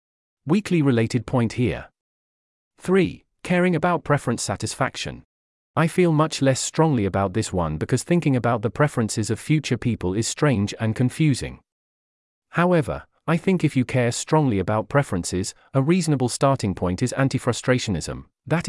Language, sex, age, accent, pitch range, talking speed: English, male, 40-59, British, 110-150 Hz, 145 wpm